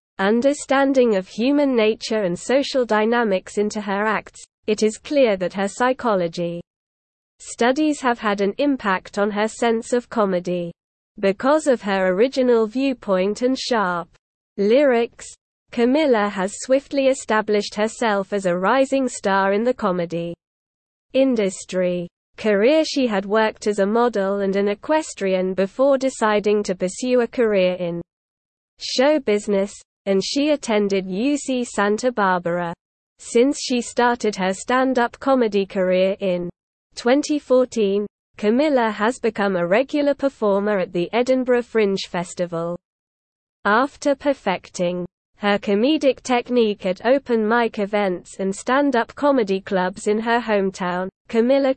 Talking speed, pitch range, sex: 130 wpm, 195-250 Hz, female